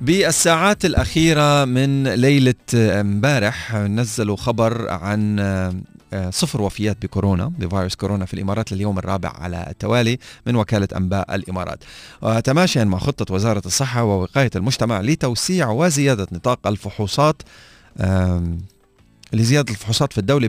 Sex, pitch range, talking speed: male, 105-145 Hz, 110 wpm